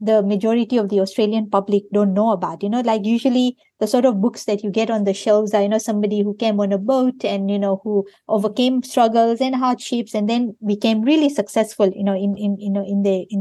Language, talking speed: English, 240 wpm